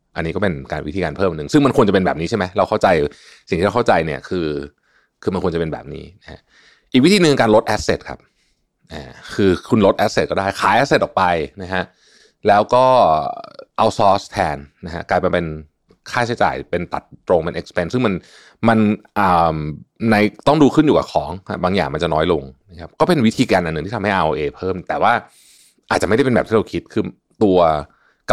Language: Thai